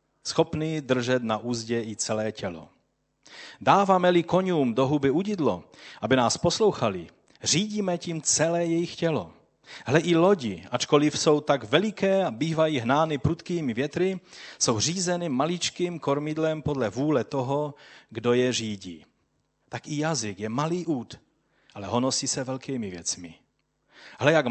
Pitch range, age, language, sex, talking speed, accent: 110-150 Hz, 40-59, Czech, male, 135 wpm, native